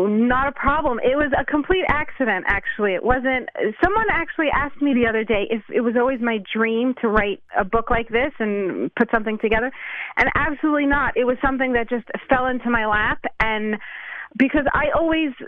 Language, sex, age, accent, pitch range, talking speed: English, female, 30-49, American, 225-290 Hz, 200 wpm